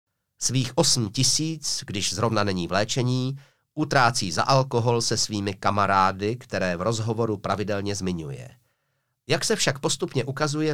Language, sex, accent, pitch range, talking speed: Czech, male, native, 105-140 Hz, 135 wpm